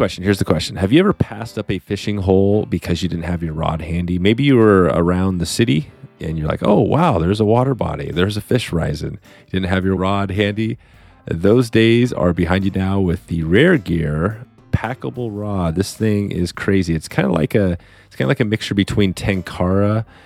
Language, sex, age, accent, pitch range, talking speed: English, male, 30-49, American, 85-105 Hz, 215 wpm